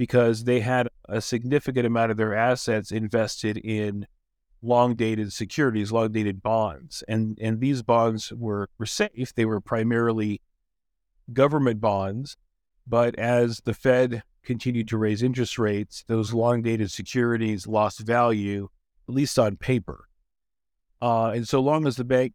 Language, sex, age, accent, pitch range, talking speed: English, male, 50-69, American, 110-125 Hz, 140 wpm